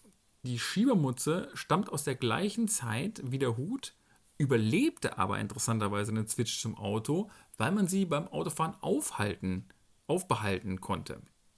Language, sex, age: German, male, 40-59